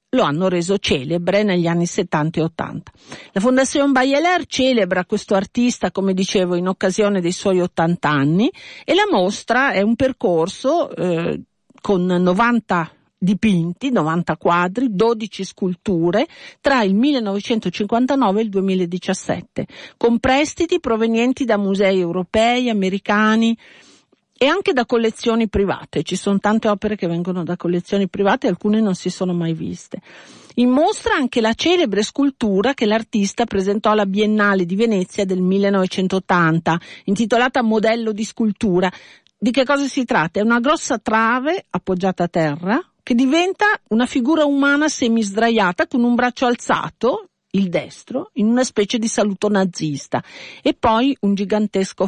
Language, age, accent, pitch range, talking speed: Italian, 50-69, native, 185-245 Hz, 145 wpm